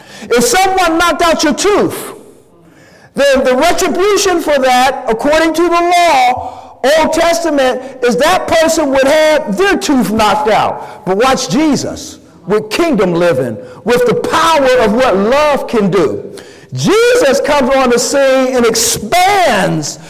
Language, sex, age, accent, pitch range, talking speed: English, male, 50-69, American, 225-330 Hz, 140 wpm